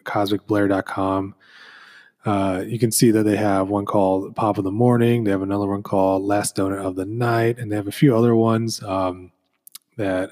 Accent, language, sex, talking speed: American, English, male, 185 wpm